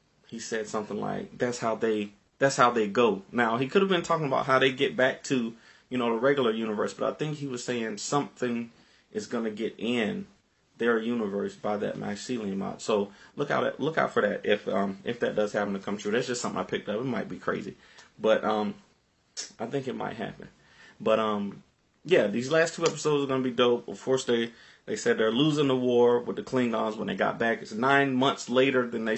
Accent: American